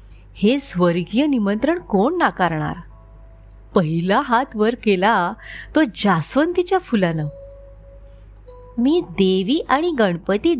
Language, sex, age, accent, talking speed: Marathi, female, 30-49, native, 90 wpm